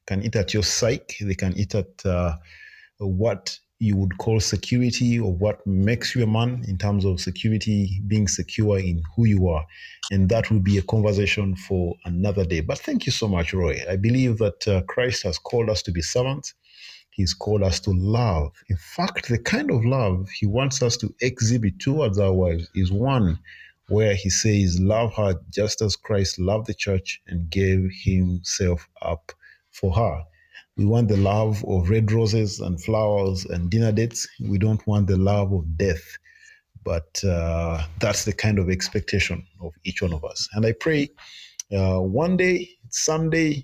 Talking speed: 185 wpm